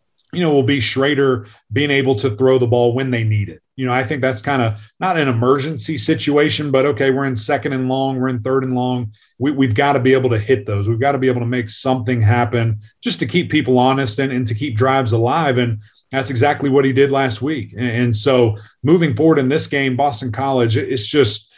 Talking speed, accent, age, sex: 240 wpm, American, 30-49, male